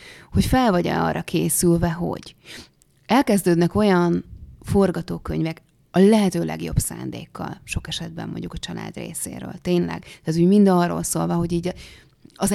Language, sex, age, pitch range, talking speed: Hungarian, female, 30-49, 165-195 Hz, 135 wpm